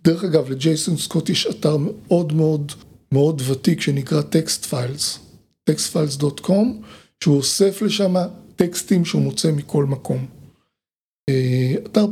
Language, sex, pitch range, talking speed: Hebrew, male, 145-200 Hz, 125 wpm